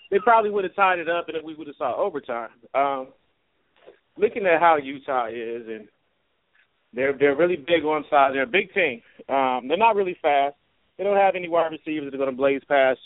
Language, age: English, 30-49